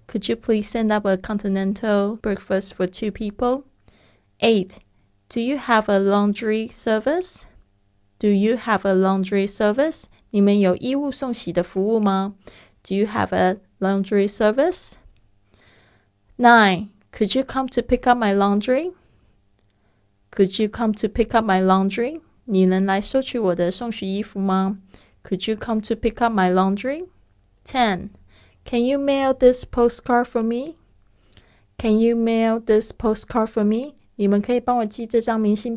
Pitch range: 185-230 Hz